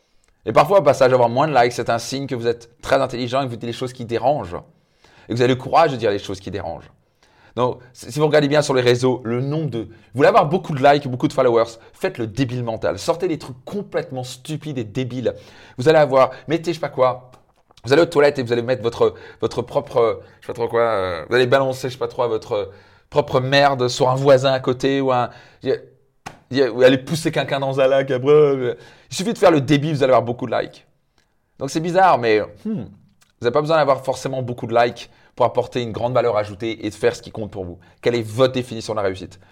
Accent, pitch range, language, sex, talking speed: French, 115-140 Hz, French, male, 250 wpm